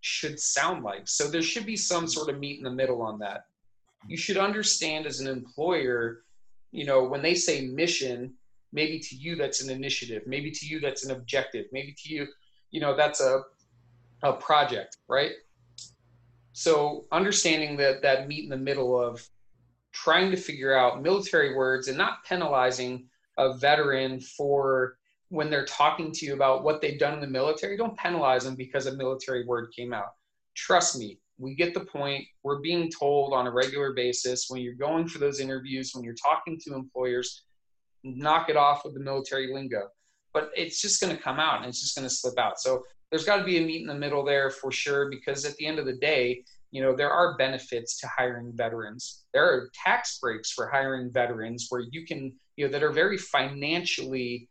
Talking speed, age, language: 200 wpm, 30-49, English